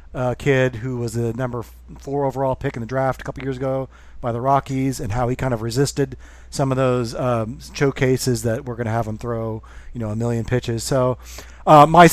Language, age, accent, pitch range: English, 30-49, American, 120-145 Hz